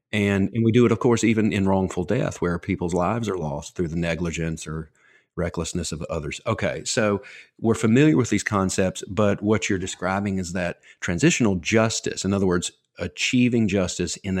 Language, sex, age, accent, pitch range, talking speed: English, male, 40-59, American, 85-105 Hz, 185 wpm